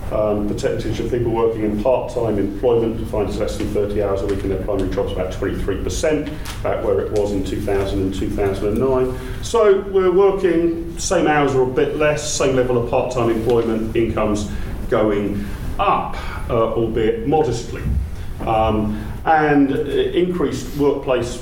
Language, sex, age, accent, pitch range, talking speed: English, male, 40-59, British, 95-120 Hz, 155 wpm